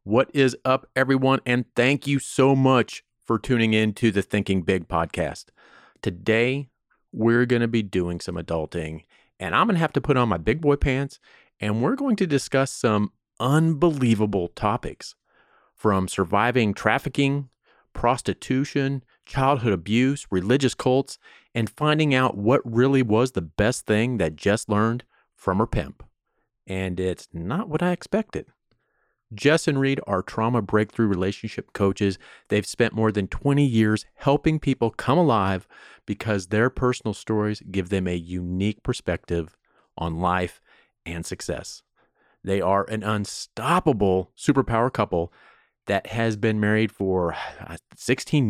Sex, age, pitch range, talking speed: male, 40-59, 100-130 Hz, 145 wpm